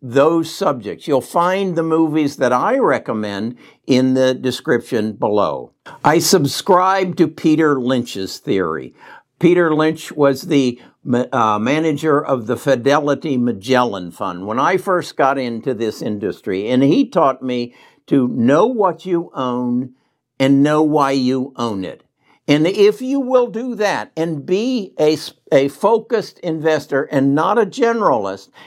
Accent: American